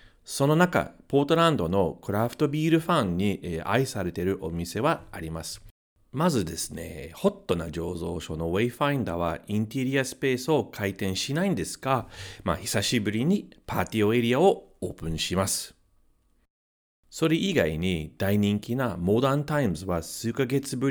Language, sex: Japanese, male